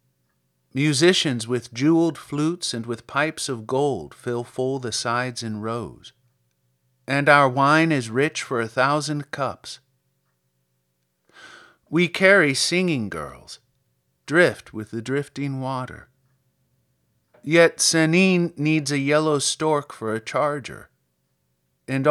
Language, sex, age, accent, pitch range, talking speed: English, male, 50-69, American, 110-155 Hz, 115 wpm